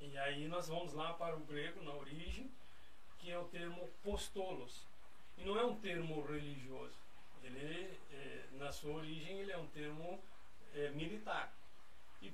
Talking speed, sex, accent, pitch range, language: 160 wpm, male, Brazilian, 150-200 Hz, Portuguese